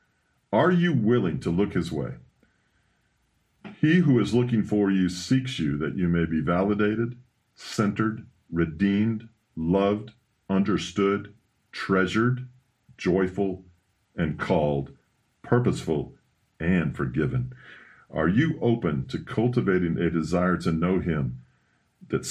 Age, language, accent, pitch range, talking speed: 50-69, English, American, 80-105 Hz, 115 wpm